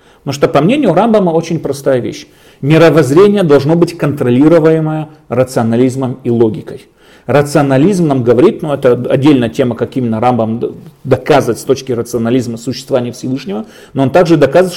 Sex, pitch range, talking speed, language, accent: male, 130-175 Hz, 140 wpm, Russian, native